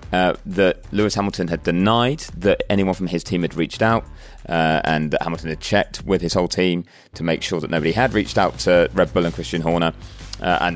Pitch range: 80-105 Hz